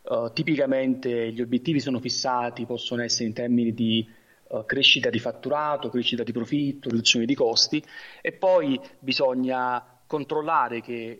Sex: male